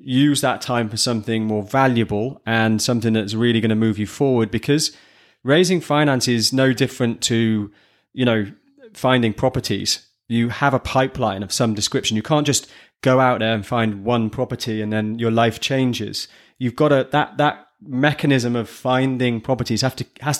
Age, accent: 20-39, British